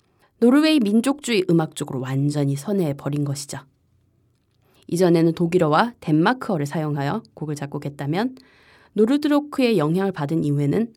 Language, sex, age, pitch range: Korean, female, 20-39, 145-210 Hz